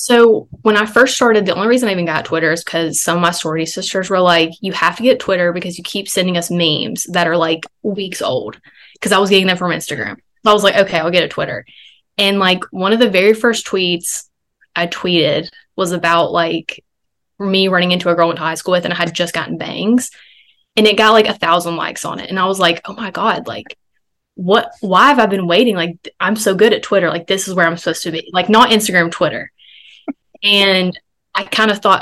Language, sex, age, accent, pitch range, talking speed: English, female, 20-39, American, 175-215 Hz, 235 wpm